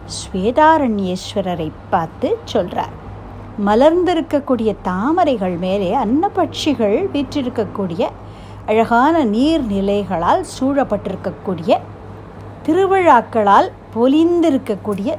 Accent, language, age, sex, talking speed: native, Tamil, 60-79, female, 50 wpm